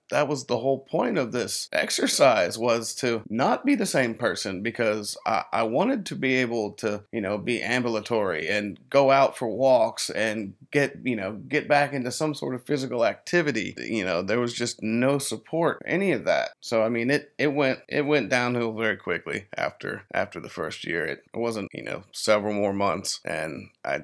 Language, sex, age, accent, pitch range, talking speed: English, male, 30-49, American, 110-140 Hz, 195 wpm